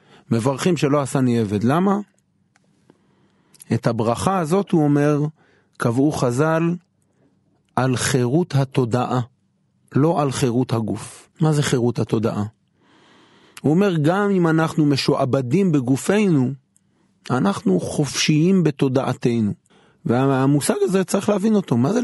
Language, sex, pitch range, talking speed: Hebrew, male, 125-170 Hz, 110 wpm